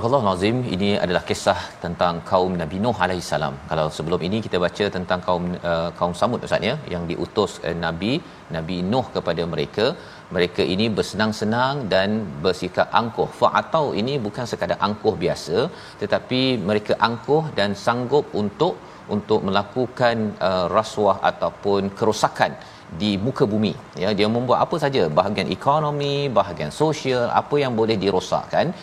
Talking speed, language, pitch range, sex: 150 wpm, Malayalam, 100-135 Hz, male